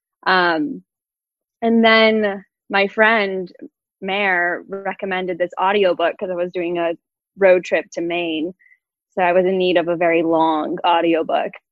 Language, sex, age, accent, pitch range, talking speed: English, female, 20-39, American, 170-205 Hz, 145 wpm